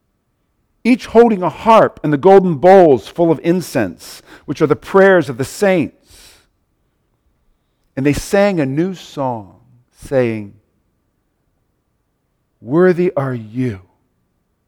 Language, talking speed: English, 115 wpm